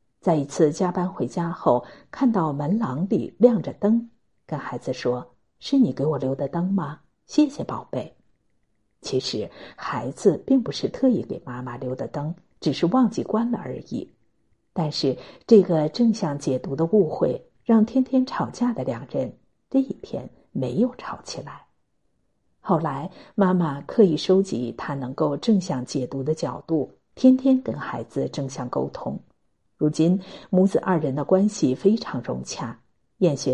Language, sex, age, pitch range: Chinese, female, 50-69, 140-215 Hz